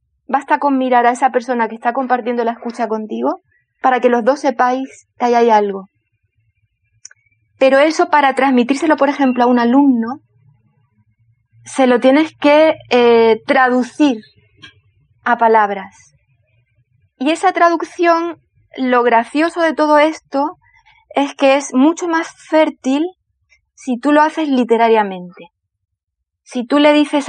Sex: female